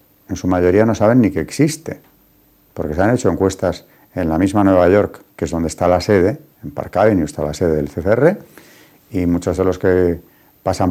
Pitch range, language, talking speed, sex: 90-105 Hz, Spanish, 210 wpm, male